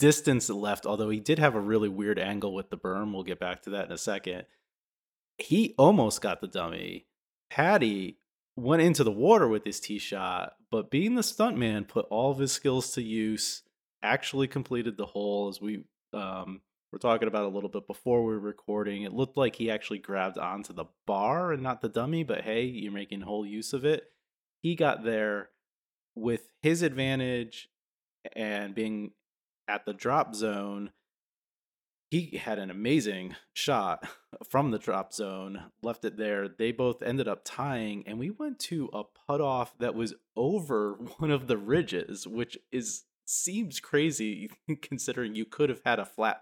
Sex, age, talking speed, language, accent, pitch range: male, 30-49, 175 wpm, English, American, 105-130 Hz